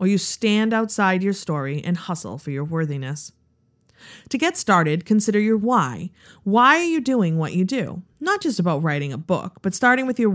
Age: 30-49